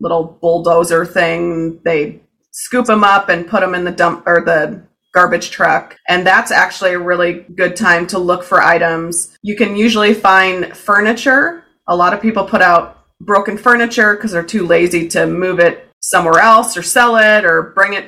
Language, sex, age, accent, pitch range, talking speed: English, female, 30-49, American, 175-215 Hz, 185 wpm